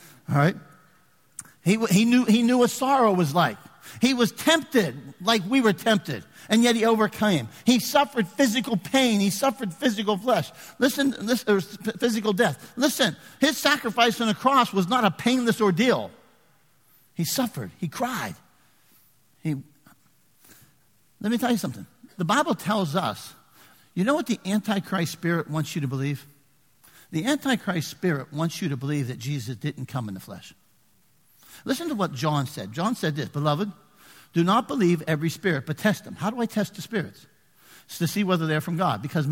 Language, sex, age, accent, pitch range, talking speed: English, male, 50-69, American, 155-225 Hz, 175 wpm